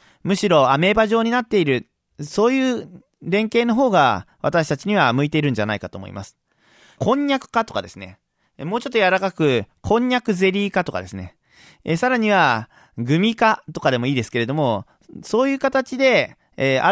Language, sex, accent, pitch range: Japanese, male, native, 140-220 Hz